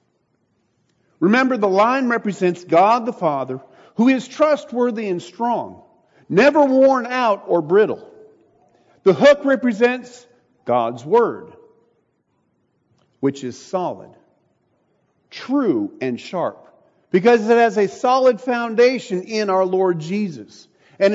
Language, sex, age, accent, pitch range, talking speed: English, male, 50-69, American, 185-250 Hz, 110 wpm